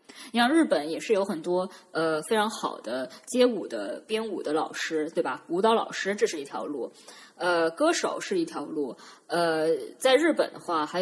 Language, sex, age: Chinese, female, 20-39